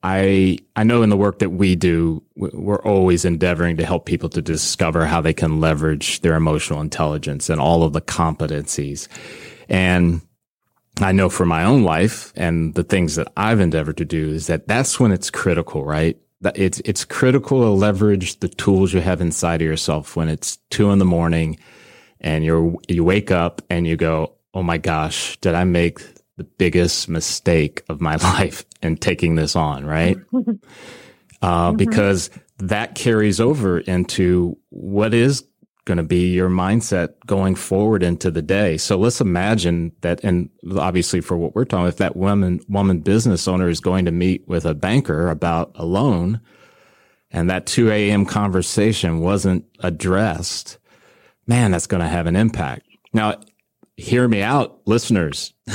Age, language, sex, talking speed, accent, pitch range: 30-49, English, male, 170 wpm, American, 85-100 Hz